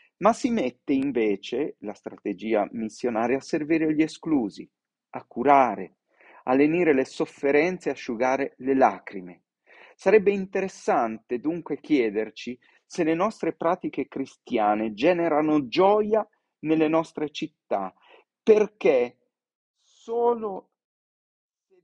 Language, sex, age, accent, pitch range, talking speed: Italian, male, 40-59, native, 135-210 Hz, 105 wpm